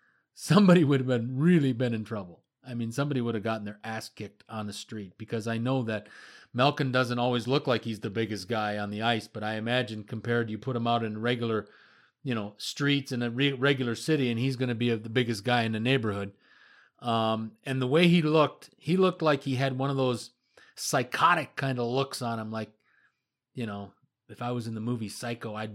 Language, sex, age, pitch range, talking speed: English, male, 30-49, 110-130 Hz, 220 wpm